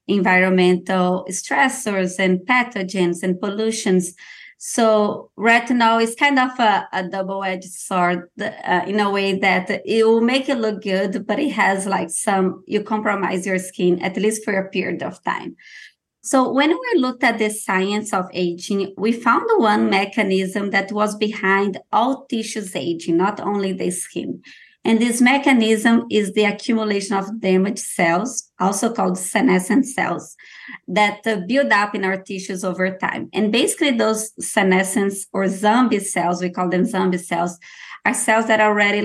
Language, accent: English, Brazilian